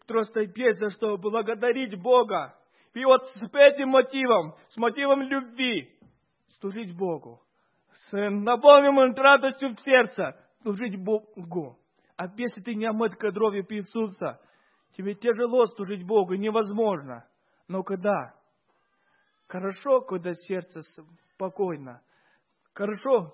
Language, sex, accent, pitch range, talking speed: Russian, male, native, 200-255 Hz, 105 wpm